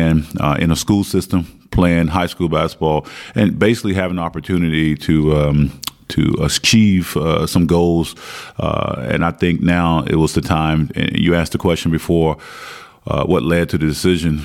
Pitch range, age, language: 80-90 Hz, 30-49, Dutch